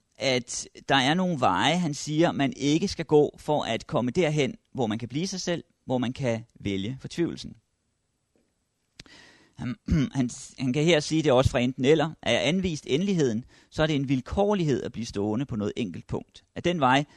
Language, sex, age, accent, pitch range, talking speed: Danish, male, 30-49, native, 120-160 Hz, 190 wpm